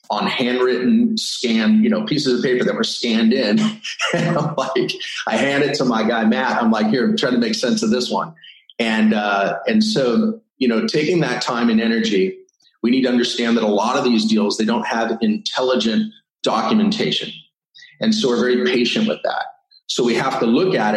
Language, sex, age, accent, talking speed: English, male, 30-49, American, 195 wpm